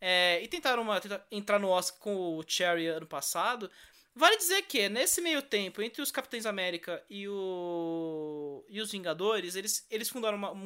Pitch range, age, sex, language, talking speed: 195-290 Hz, 20-39, male, English, 175 wpm